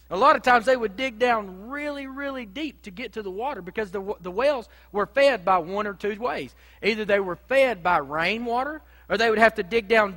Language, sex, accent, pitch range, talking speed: English, male, American, 175-235 Hz, 240 wpm